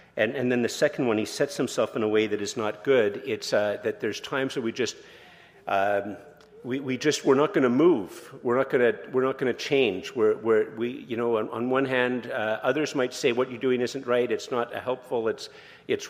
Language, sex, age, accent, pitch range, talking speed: English, male, 50-69, American, 110-135 Hz, 240 wpm